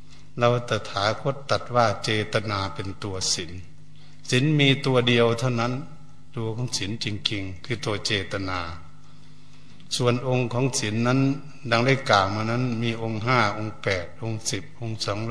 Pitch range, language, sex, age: 105-135 Hz, Thai, male, 70-89